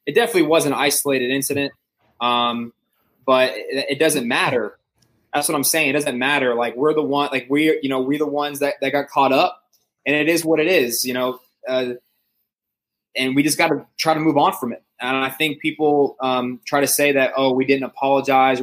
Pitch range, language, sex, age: 125-150 Hz, English, male, 20-39